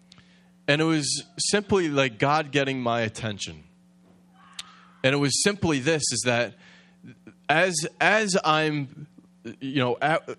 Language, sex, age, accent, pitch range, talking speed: English, male, 20-39, American, 120-180 Hz, 125 wpm